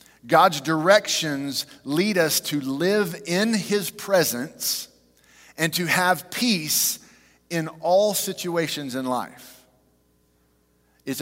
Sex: male